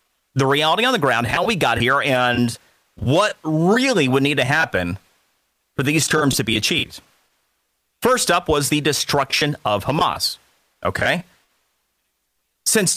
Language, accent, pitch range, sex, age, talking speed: English, American, 130-195 Hz, male, 40-59, 145 wpm